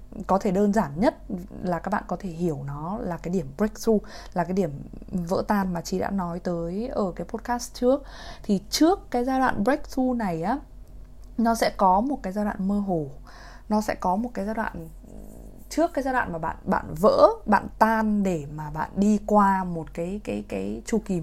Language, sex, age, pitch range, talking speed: Vietnamese, female, 20-39, 175-230 Hz, 215 wpm